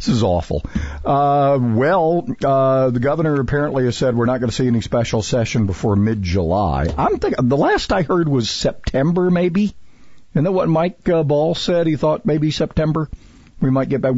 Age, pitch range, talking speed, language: 50-69, 100-135 Hz, 185 wpm, English